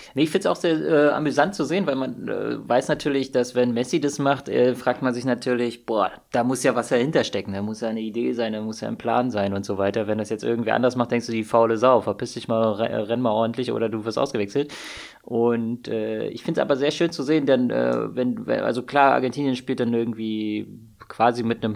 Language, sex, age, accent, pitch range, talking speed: German, male, 20-39, German, 115-140 Hz, 250 wpm